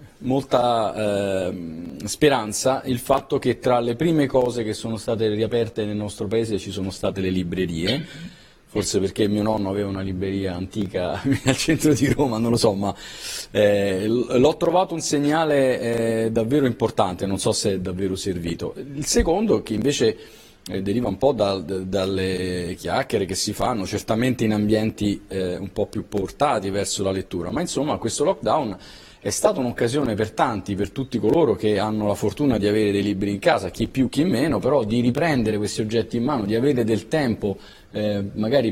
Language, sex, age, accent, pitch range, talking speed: Italian, male, 40-59, native, 100-125 Hz, 175 wpm